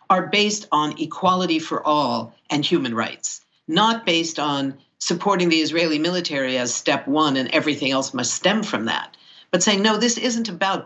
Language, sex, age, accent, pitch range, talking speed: English, female, 50-69, American, 150-225 Hz, 175 wpm